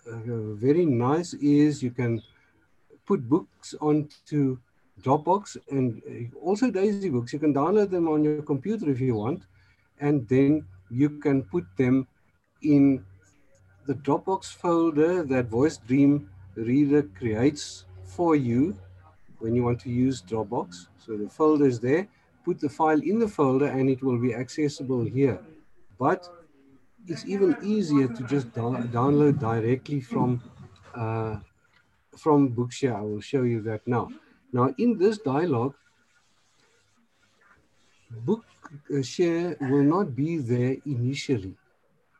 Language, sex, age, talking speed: English, male, 50-69, 130 wpm